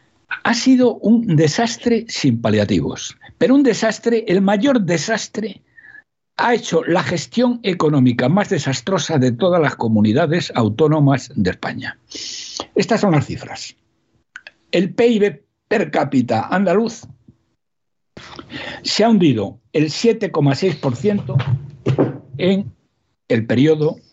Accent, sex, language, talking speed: Spanish, male, Spanish, 105 wpm